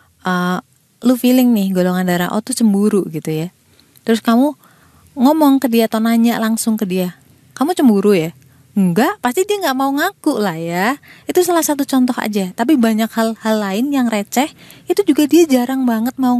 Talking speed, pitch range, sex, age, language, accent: 185 wpm, 195-265 Hz, female, 20-39, Indonesian, native